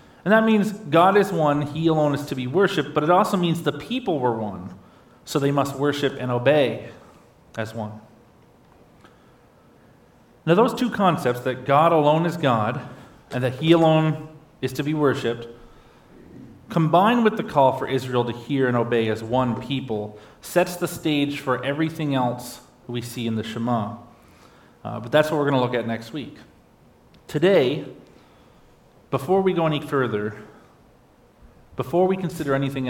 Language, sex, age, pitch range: English, male, 40-59, 120-155 Hz